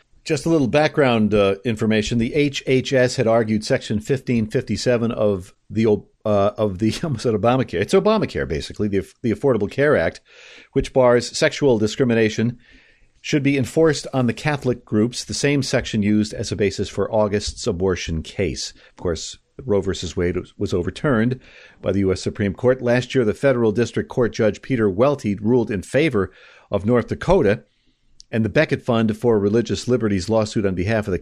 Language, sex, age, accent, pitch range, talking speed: English, male, 50-69, American, 105-130 Hz, 160 wpm